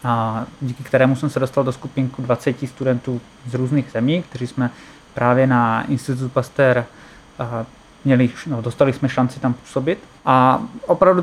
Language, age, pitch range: Czech, 20-39, 130-145 Hz